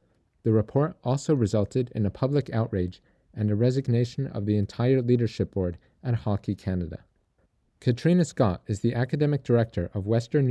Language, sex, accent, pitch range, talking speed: English, male, American, 100-125 Hz, 155 wpm